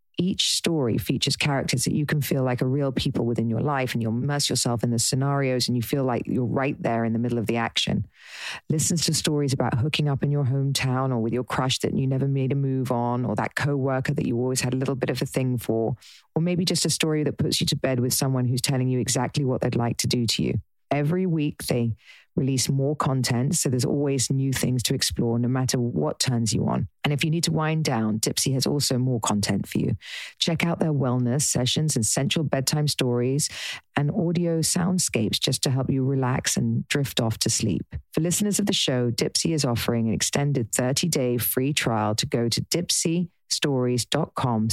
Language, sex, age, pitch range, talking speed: English, female, 40-59, 120-145 Hz, 220 wpm